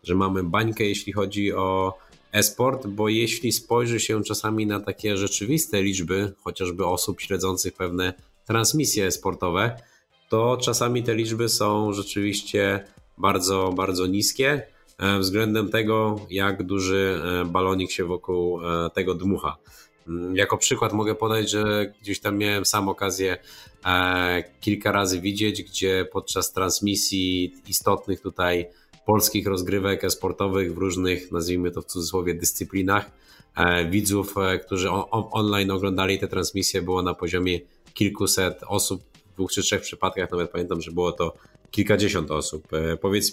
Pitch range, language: 90-105 Hz, Polish